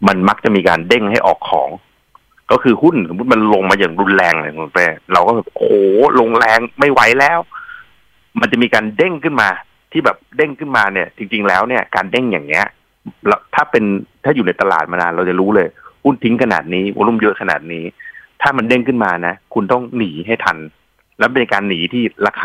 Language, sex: Thai, male